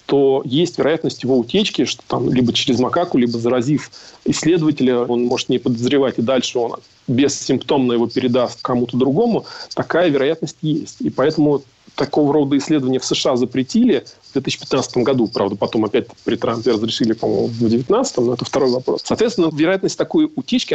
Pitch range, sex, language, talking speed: 125-165 Hz, male, Russian, 160 wpm